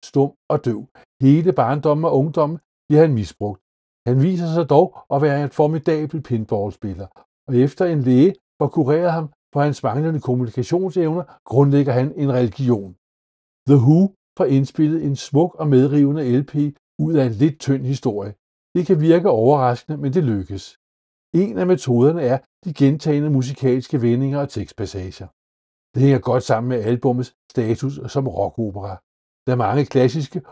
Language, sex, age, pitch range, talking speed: Danish, male, 60-79, 120-155 Hz, 155 wpm